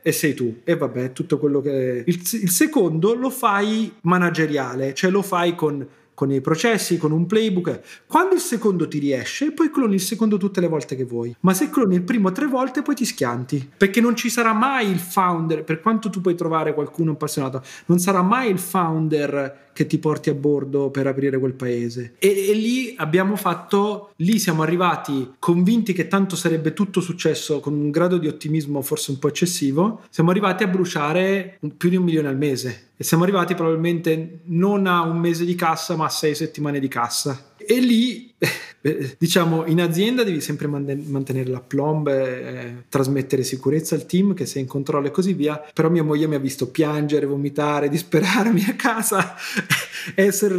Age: 30-49